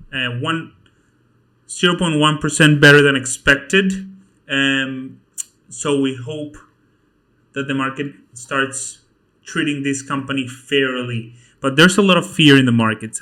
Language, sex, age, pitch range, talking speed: English, male, 30-49, 130-145 Hz, 125 wpm